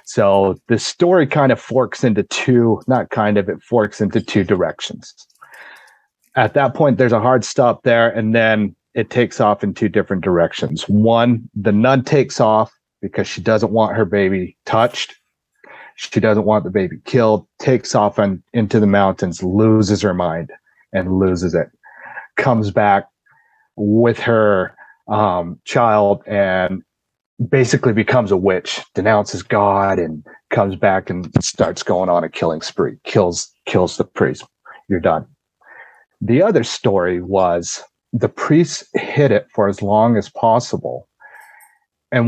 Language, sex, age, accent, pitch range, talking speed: English, male, 30-49, American, 95-115 Hz, 150 wpm